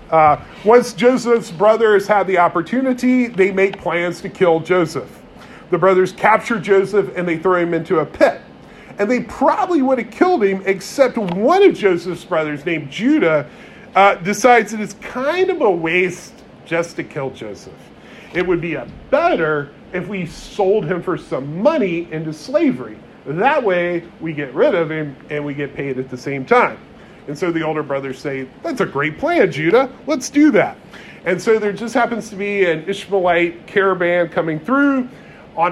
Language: English